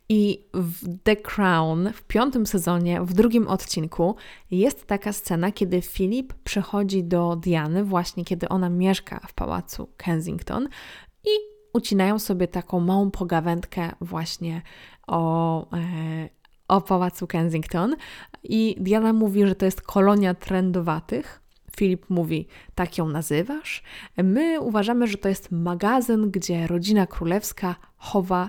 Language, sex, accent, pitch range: Polish, female, native, 175-210 Hz